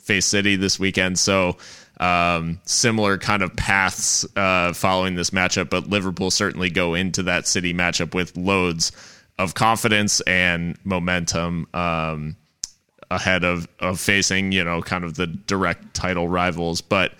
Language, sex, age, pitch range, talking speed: English, male, 20-39, 90-115 Hz, 145 wpm